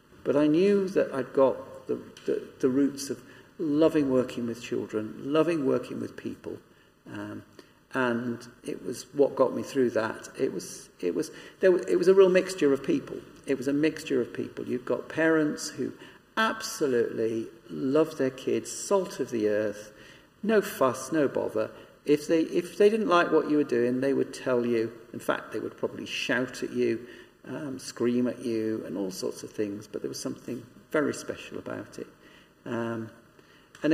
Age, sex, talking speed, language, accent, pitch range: 50-69, male, 185 wpm, English, British, 115-155 Hz